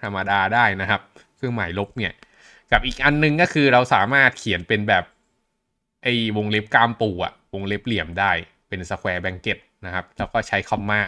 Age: 20-39